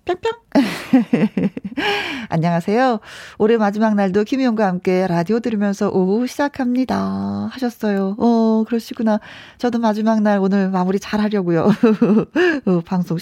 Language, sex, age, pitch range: Korean, female, 40-59, 180-260 Hz